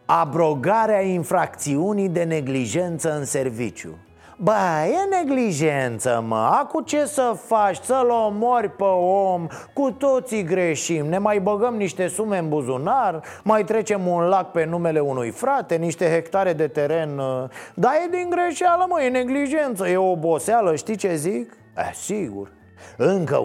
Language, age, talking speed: Romanian, 30-49, 140 wpm